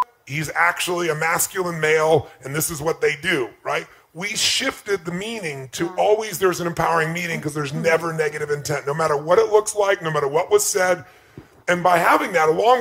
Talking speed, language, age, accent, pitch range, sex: 200 wpm, English, 30-49, American, 160-215 Hz, female